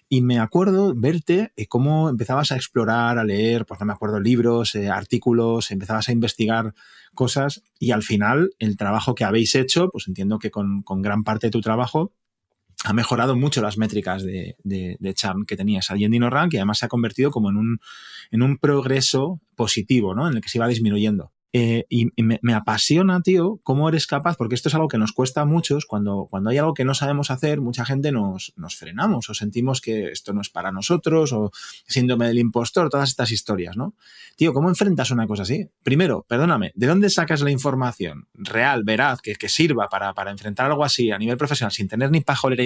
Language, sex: Spanish, male